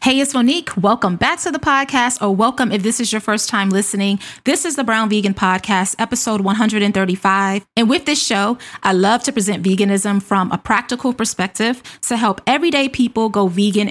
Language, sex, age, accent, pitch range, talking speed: English, female, 20-39, American, 190-235 Hz, 190 wpm